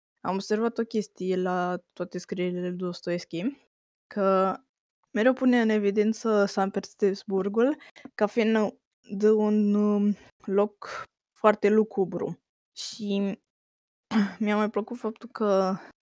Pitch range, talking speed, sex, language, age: 190-215 Hz, 105 wpm, female, Romanian, 20-39